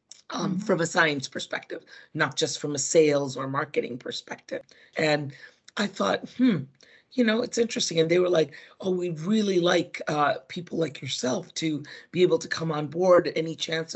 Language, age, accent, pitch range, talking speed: English, 40-59, American, 145-175 Hz, 180 wpm